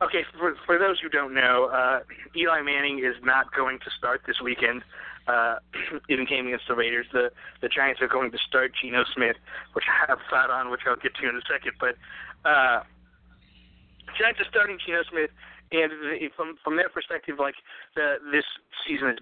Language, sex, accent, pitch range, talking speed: English, male, American, 120-155 Hz, 195 wpm